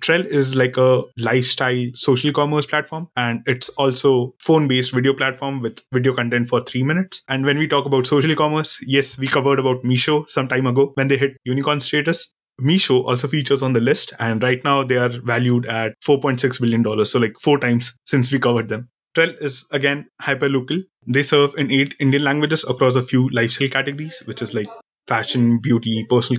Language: English